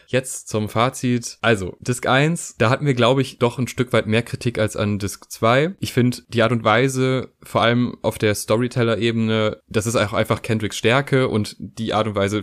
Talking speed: 210 wpm